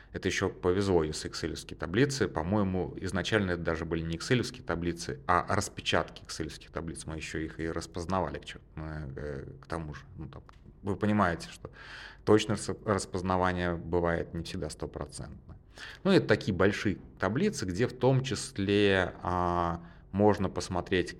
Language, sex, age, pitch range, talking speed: Russian, male, 30-49, 85-105 Hz, 140 wpm